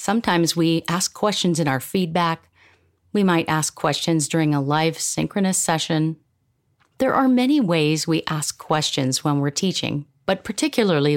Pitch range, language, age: 145-195 Hz, English, 40-59